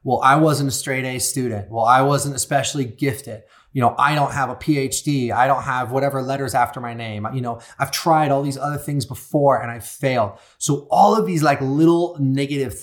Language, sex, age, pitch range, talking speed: English, male, 30-49, 120-150 Hz, 215 wpm